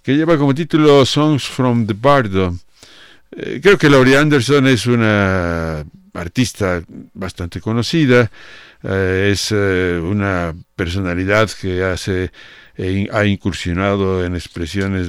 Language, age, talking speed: Spanish, 60-79, 115 wpm